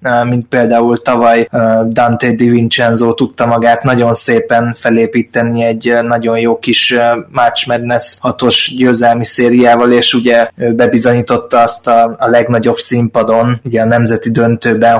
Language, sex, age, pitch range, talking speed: Hungarian, male, 20-39, 115-125 Hz, 125 wpm